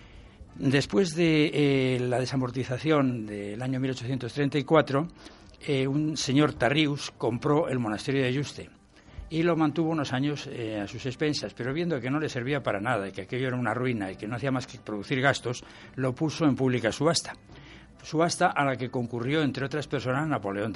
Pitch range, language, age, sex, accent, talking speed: 115-145 Hz, Spanish, 60-79, male, Spanish, 180 wpm